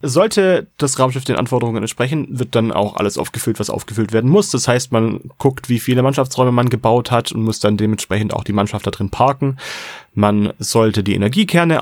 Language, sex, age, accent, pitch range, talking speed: German, male, 30-49, German, 105-135 Hz, 200 wpm